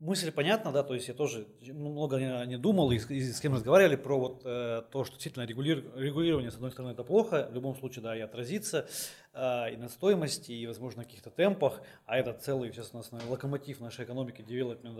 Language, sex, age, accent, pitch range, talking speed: Russian, male, 20-39, native, 125-155 Hz, 210 wpm